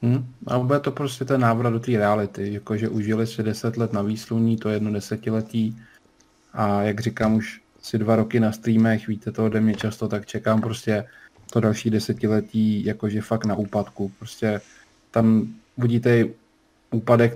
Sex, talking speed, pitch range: male, 175 wpm, 105-115 Hz